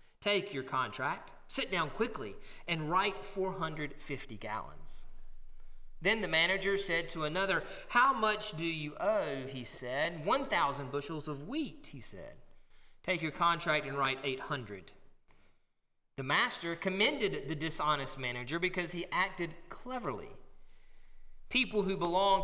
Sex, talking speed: male, 130 wpm